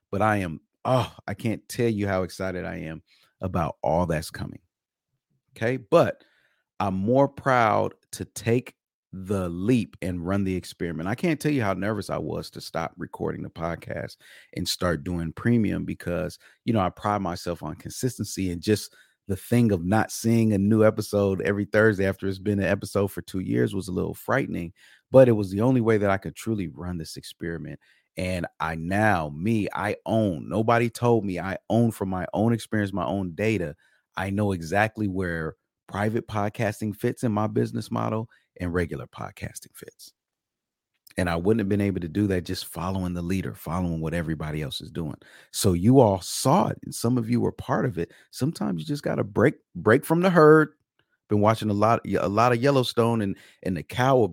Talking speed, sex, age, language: 200 wpm, male, 30-49, English